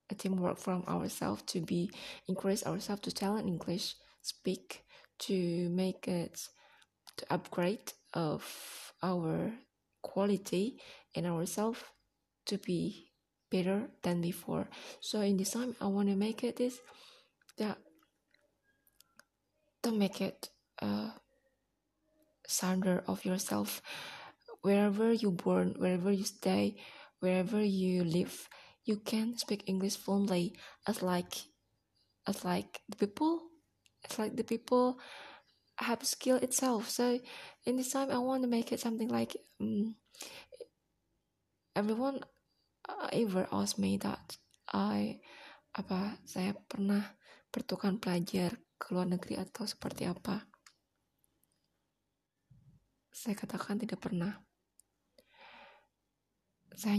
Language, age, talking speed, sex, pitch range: Indonesian, 20-39, 110 wpm, female, 185-230 Hz